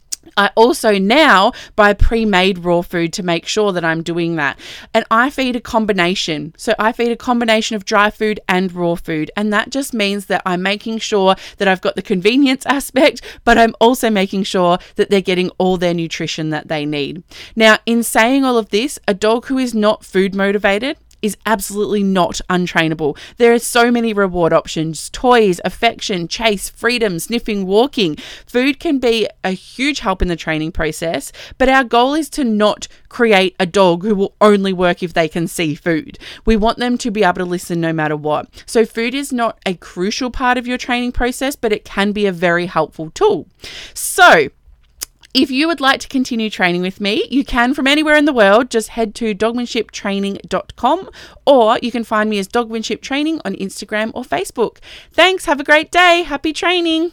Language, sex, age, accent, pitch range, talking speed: English, female, 20-39, Australian, 185-240 Hz, 195 wpm